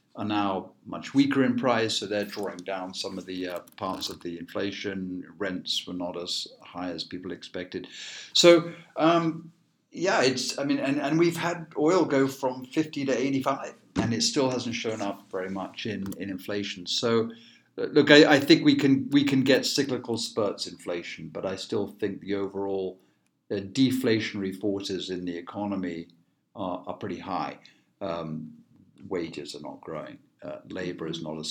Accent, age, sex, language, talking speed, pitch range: British, 50-69, male, English, 175 wpm, 90-130 Hz